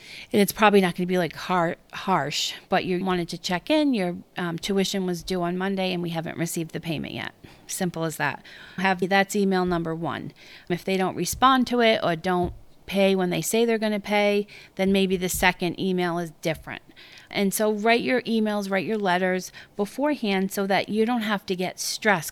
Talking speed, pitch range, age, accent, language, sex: 210 wpm, 180-210 Hz, 40-59, American, English, female